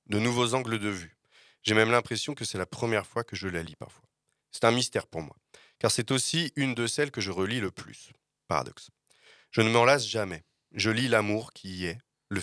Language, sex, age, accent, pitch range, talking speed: French, male, 30-49, French, 95-120 Hz, 225 wpm